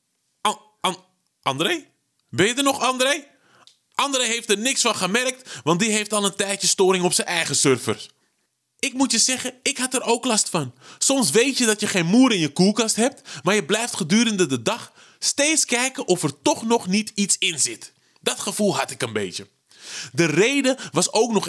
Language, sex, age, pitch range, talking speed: Dutch, male, 20-39, 155-235 Hz, 200 wpm